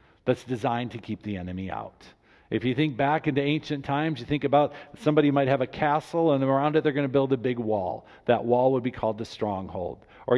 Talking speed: 230 wpm